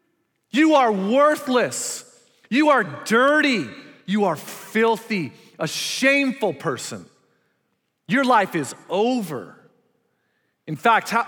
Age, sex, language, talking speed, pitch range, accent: 40-59, male, English, 100 wpm, 130-195 Hz, American